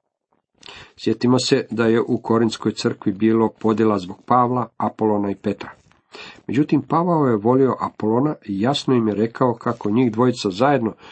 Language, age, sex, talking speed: Croatian, 50-69, male, 150 wpm